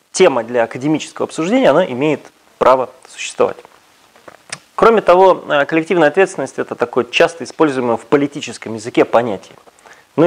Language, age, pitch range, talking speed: Russian, 30-49, 120-165 Hz, 125 wpm